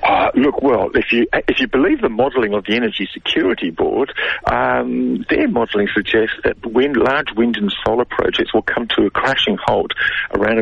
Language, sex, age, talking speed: English, male, 50-69, 185 wpm